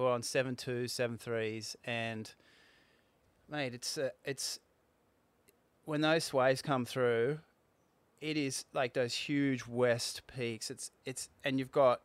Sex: male